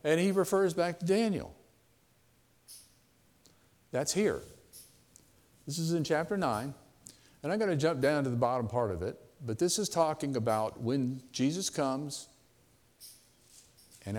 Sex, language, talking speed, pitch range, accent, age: male, English, 145 wpm, 115-160 Hz, American, 50-69